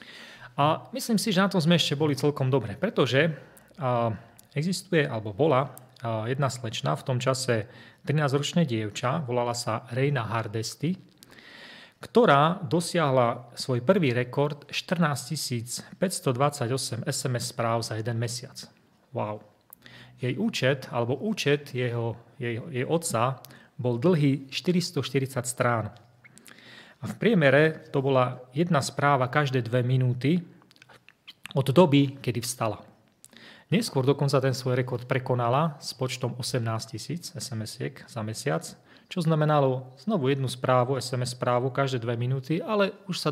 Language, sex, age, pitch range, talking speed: Slovak, male, 30-49, 120-150 Hz, 125 wpm